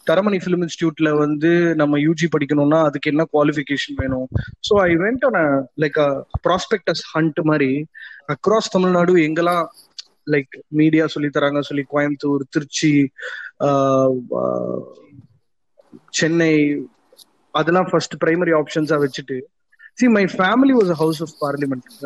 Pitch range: 145-170 Hz